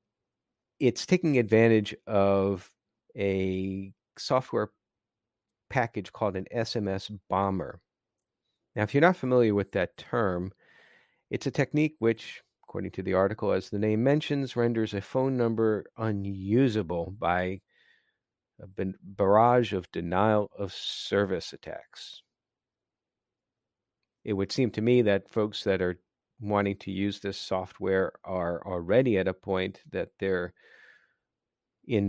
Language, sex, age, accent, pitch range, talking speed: English, male, 50-69, American, 95-110 Hz, 120 wpm